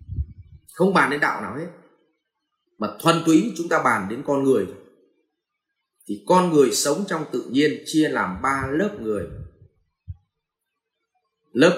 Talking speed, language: 145 wpm, Vietnamese